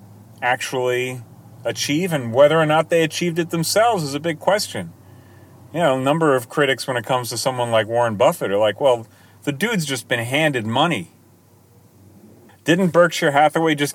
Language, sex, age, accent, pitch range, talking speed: English, male, 30-49, American, 110-150 Hz, 175 wpm